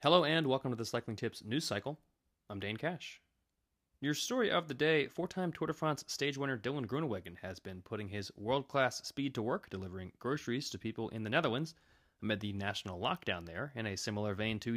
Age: 30-49